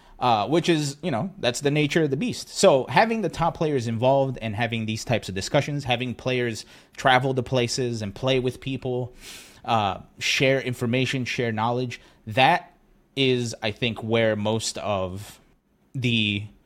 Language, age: English, 30-49